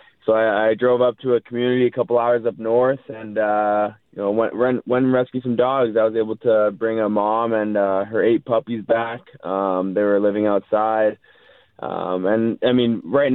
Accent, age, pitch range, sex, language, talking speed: American, 20-39, 105-125 Hz, male, English, 210 wpm